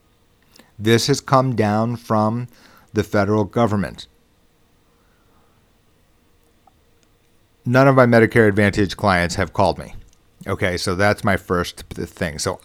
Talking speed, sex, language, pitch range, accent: 115 wpm, male, English, 95-115 Hz, American